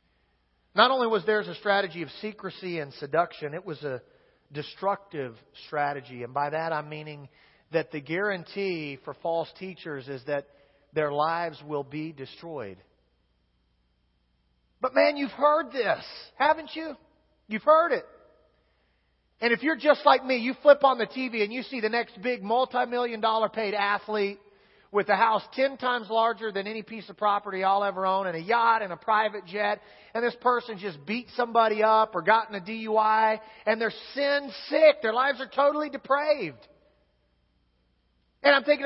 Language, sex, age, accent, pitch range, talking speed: English, male, 40-59, American, 165-265 Hz, 165 wpm